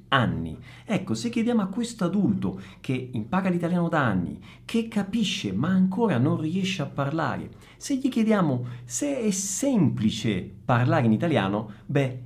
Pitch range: 125-195 Hz